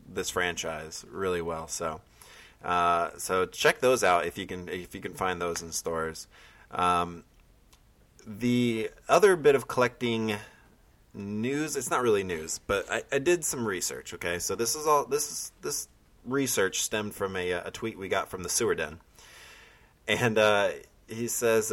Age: 20-39